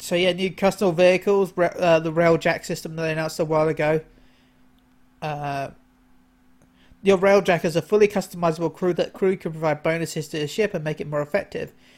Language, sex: English, male